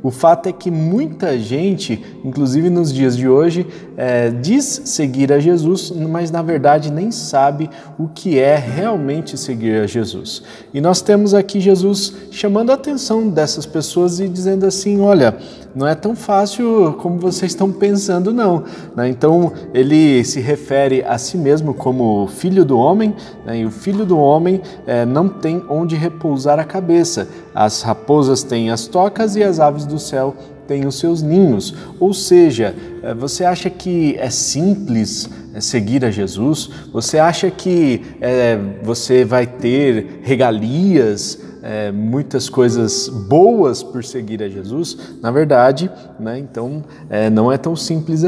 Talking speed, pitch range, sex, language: 150 wpm, 120-180 Hz, male, Portuguese